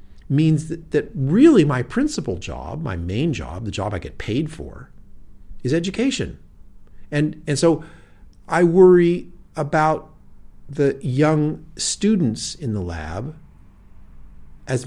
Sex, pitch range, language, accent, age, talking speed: male, 85-125 Hz, Danish, American, 50-69, 125 wpm